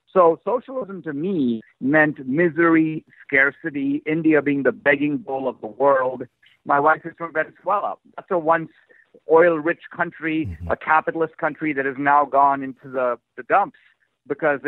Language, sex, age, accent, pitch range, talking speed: English, male, 50-69, American, 135-180 Hz, 150 wpm